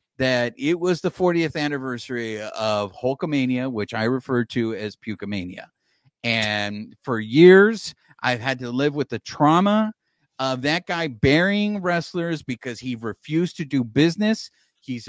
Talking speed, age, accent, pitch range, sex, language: 145 wpm, 50-69, American, 130-215 Hz, male, English